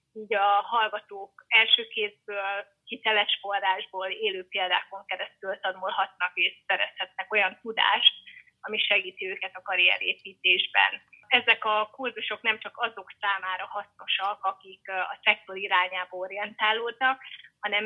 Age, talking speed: 30-49, 110 wpm